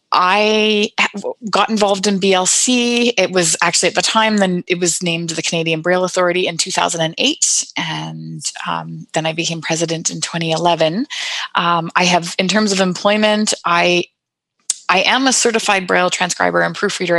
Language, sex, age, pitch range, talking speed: English, female, 20-39, 165-195 Hz, 155 wpm